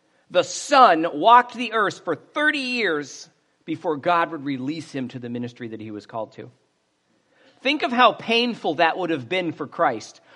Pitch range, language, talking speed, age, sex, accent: 175-280 Hz, English, 180 wpm, 50-69, male, American